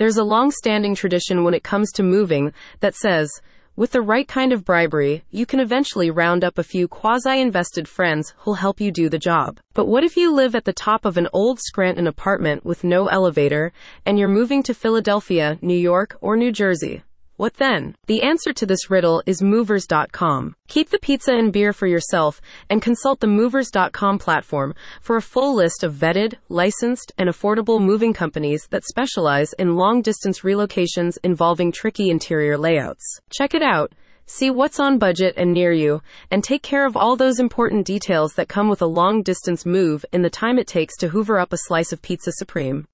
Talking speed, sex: 195 wpm, female